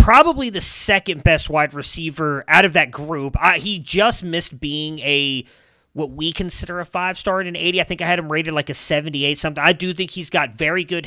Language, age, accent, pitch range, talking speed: English, 30-49, American, 145-185 Hz, 230 wpm